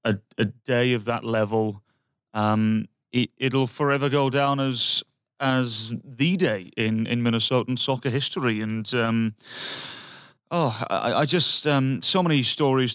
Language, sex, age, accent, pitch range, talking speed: English, male, 30-49, British, 110-135 Hz, 145 wpm